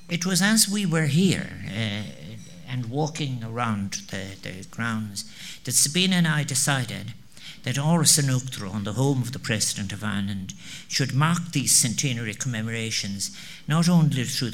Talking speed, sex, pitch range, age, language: 150 wpm, male, 115-155 Hz, 60-79, English